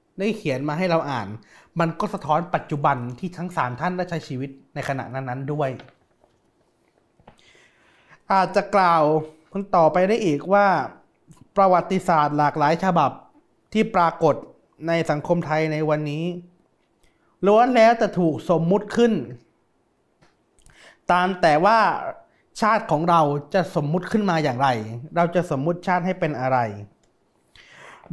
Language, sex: Thai, male